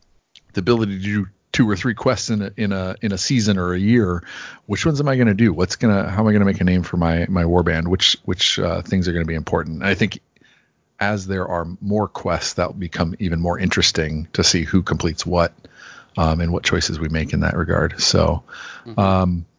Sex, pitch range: male, 90-115 Hz